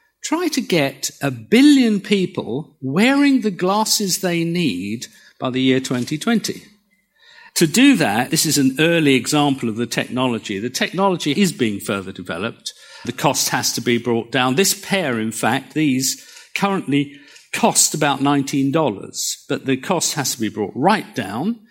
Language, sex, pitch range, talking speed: English, male, 140-210 Hz, 160 wpm